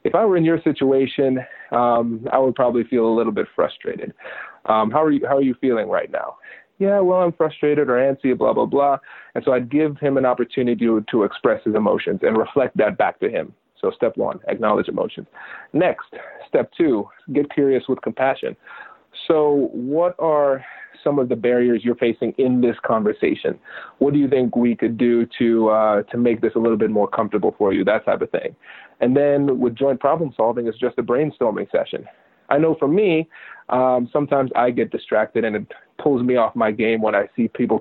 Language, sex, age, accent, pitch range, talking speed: English, male, 30-49, American, 120-145 Hz, 205 wpm